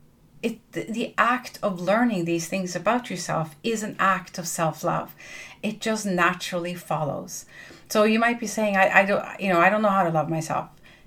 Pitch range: 170-210 Hz